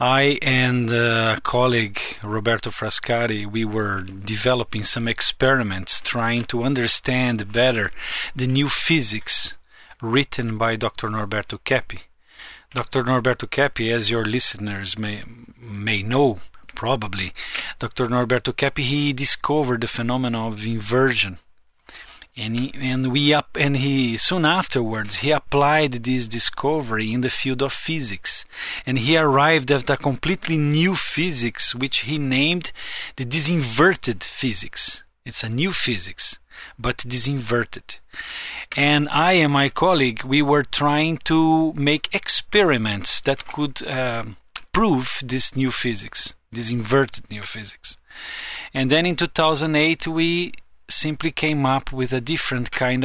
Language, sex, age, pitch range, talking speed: English, male, 40-59, 115-145 Hz, 130 wpm